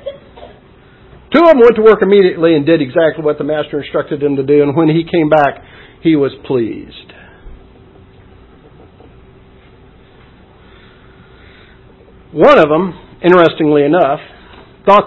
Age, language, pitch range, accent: 50-69, English, 130-170 Hz, American